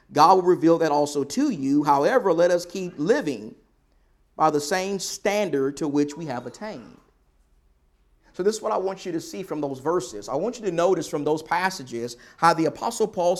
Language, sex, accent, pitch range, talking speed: English, male, American, 160-220 Hz, 200 wpm